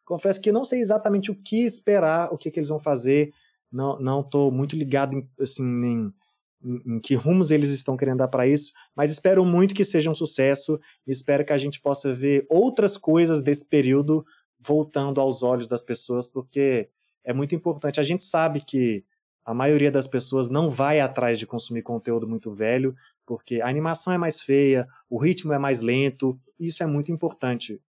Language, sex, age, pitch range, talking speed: Portuguese, male, 20-39, 120-150 Hz, 195 wpm